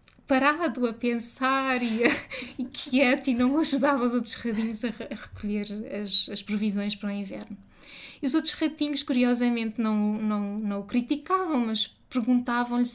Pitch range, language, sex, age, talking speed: 225-260 Hz, Portuguese, female, 20-39, 145 wpm